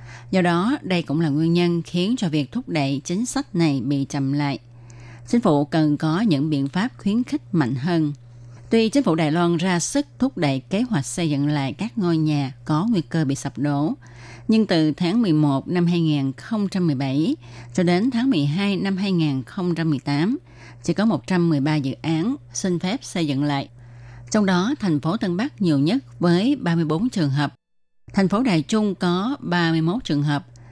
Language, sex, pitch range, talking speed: Vietnamese, female, 140-180 Hz, 185 wpm